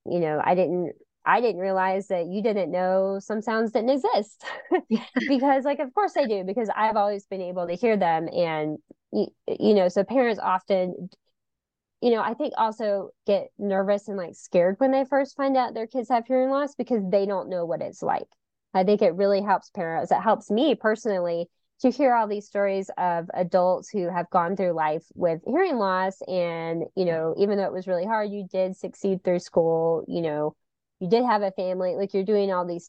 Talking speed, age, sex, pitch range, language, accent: 210 wpm, 20-39, female, 175-220 Hz, English, American